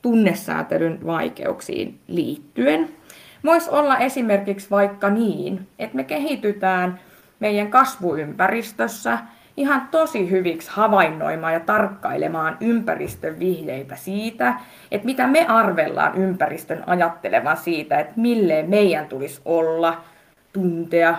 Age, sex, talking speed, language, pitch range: 20-39, female, 100 wpm, Finnish, 165-215 Hz